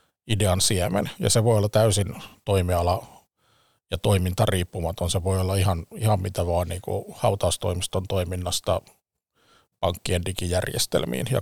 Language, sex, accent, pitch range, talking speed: Finnish, male, native, 95-110 Hz, 120 wpm